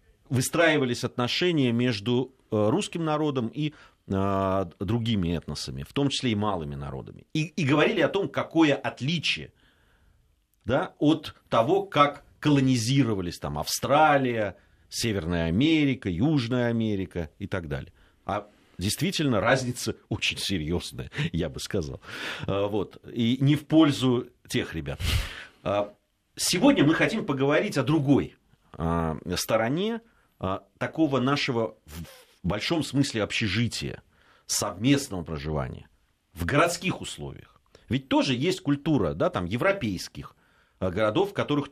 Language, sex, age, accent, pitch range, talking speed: Russian, male, 40-59, native, 95-145 Hz, 110 wpm